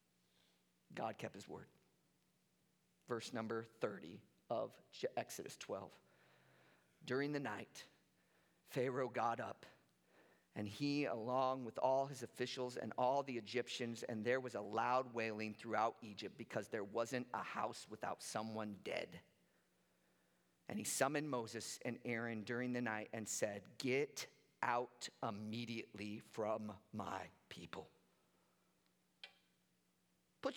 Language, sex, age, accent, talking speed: English, male, 50-69, American, 120 wpm